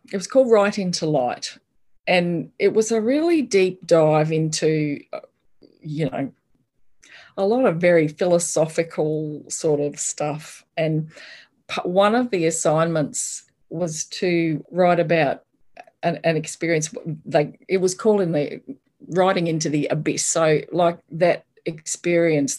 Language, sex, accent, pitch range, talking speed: English, female, Australian, 155-190 Hz, 135 wpm